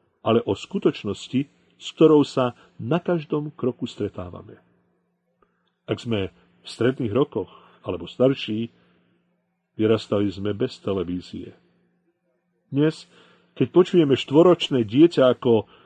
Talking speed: 100 wpm